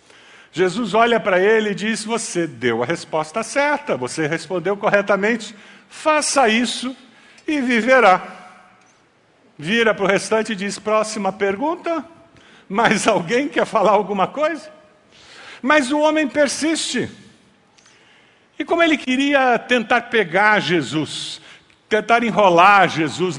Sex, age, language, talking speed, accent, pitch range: male, 50-69, Portuguese, 120 wpm, Brazilian, 165-245 Hz